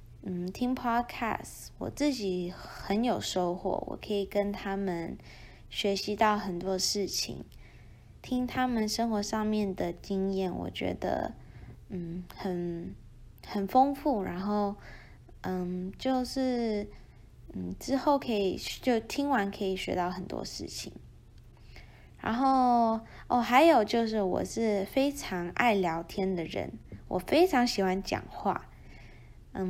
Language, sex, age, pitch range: English, female, 20-39, 180-230 Hz